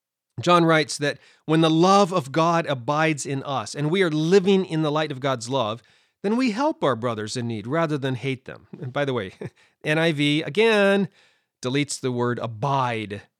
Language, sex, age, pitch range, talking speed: English, male, 30-49, 125-195 Hz, 190 wpm